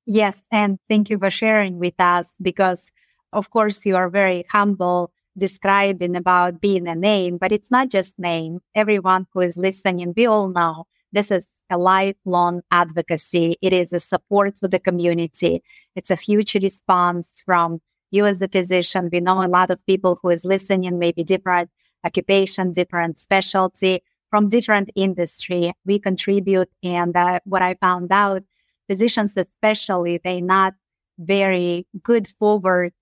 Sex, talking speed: female, 155 wpm